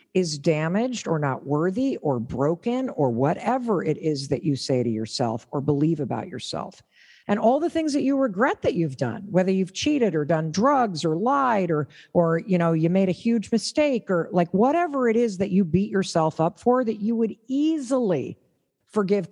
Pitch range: 175-245 Hz